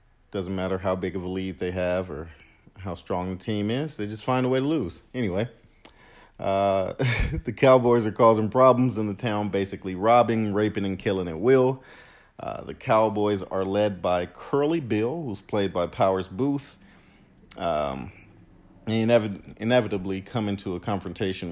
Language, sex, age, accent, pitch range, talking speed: English, male, 40-59, American, 95-110 Hz, 160 wpm